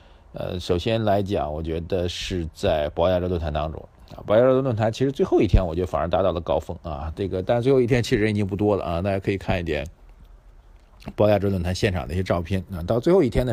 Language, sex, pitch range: Chinese, male, 85-110 Hz